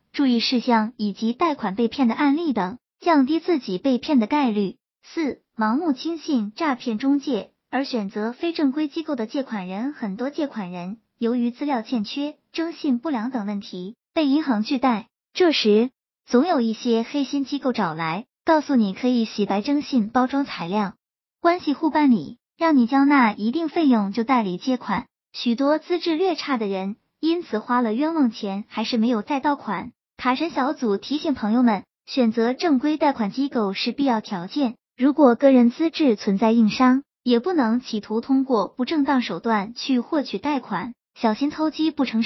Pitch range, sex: 225-290 Hz, male